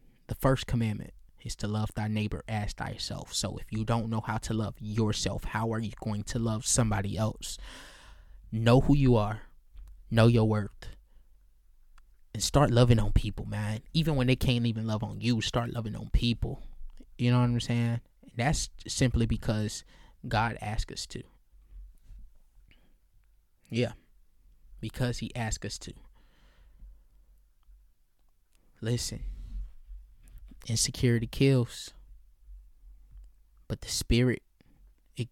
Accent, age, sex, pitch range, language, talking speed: American, 20-39, male, 100-120 Hz, English, 135 wpm